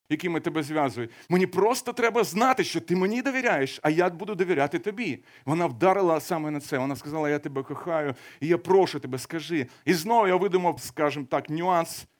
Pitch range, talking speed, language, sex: 145-185 Hz, 185 wpm, Ukrainian, male